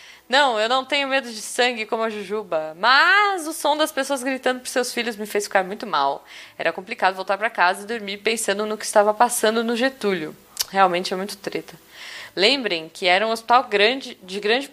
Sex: female